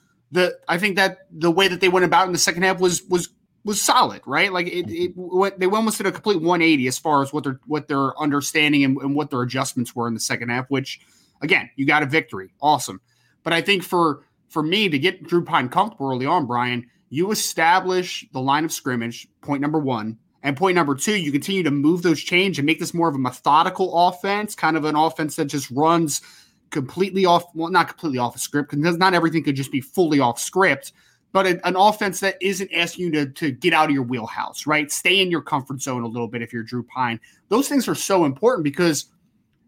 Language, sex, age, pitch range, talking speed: English, male, 20-39, 135-180 Hz, 230 wpm